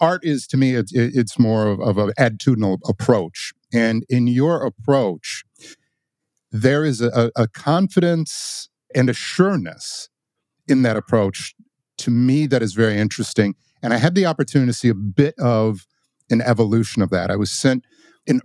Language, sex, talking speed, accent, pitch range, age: English, male, 160 wpm, American, 110-145 Hz, 50-69